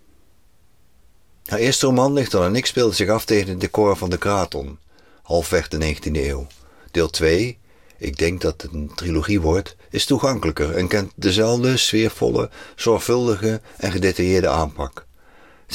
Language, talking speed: Dutch, 155 wpm